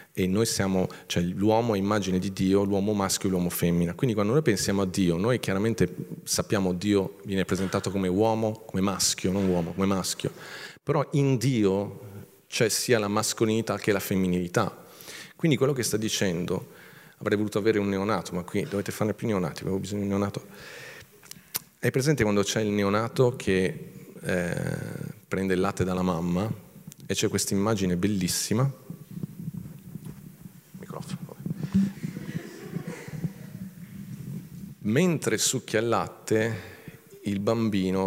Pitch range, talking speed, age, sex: 95-130 Hz, 140 wpm, 40-59, male